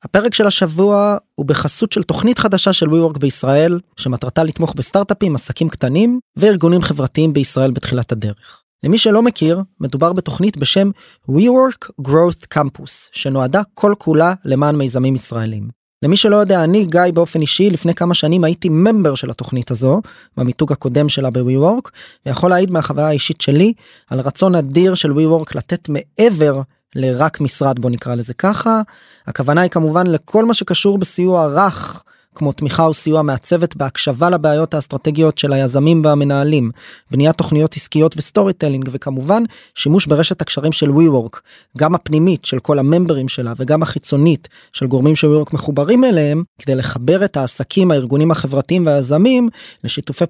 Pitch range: 140-180 Hz